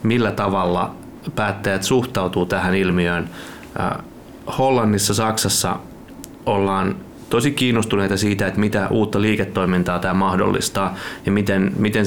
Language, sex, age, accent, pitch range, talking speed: Finnish, male, 30-49, native, 95-105 Hz, 110 wpm